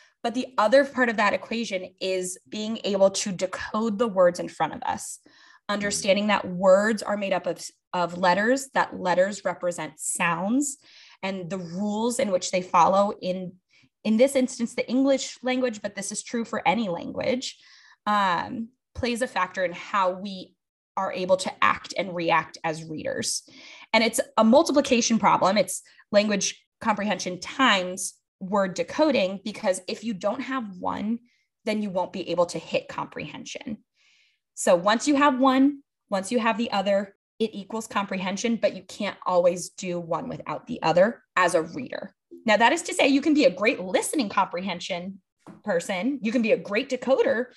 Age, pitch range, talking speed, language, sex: 20-39, 185-255 Hz, 170 wpm, English, female